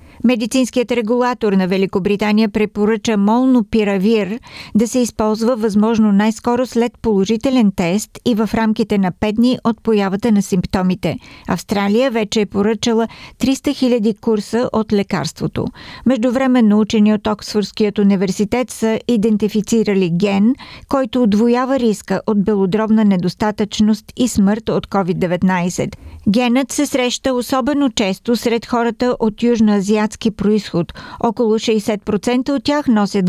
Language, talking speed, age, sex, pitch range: Bulgarian, 120 wpm, 50-69, female, 205-240 Hz